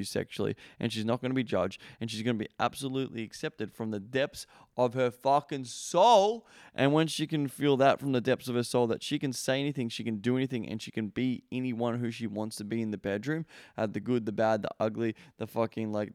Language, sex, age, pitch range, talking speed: English, male, 20-39, 110-125 Hz, 250 wpm